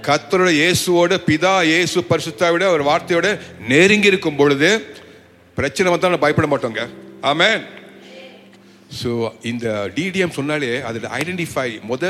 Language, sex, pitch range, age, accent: Tamil, male, 105-155 Hz, 60-79, native